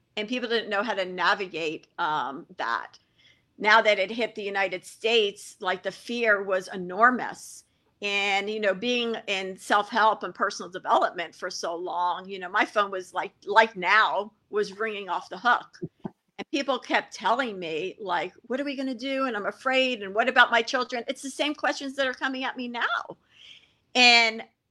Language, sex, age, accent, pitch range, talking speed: English, female, 50-69, American, 205-275 Hz, 190 wpm